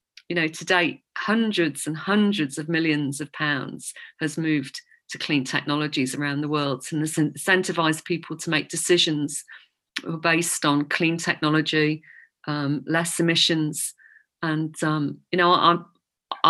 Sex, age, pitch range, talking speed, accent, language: female, 40-59, 150-185 Hz, 140 wpm, British, English